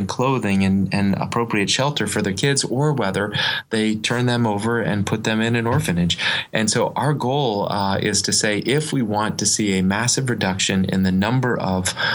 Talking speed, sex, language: 200 wpm, male, English